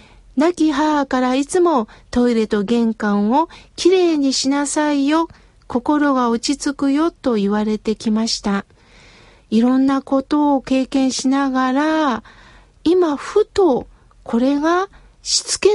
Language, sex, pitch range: Japanese, female, 225-310 Hz